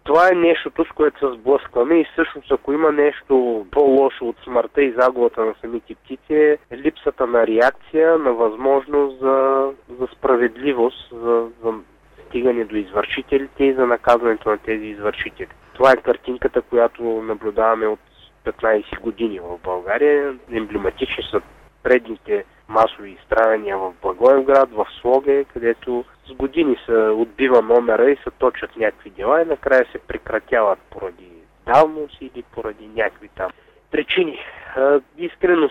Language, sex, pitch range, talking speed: Bulgarian, male, 115-150 Hz, 140 wpm